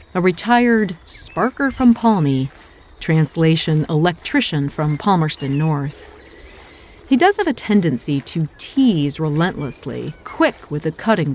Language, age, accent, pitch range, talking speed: English, 40-59, American, 140-200 Hz, 115 wpm